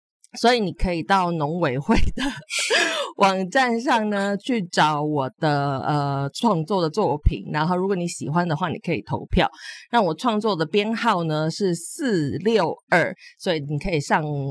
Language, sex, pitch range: Chinese, female, 145-200 Hz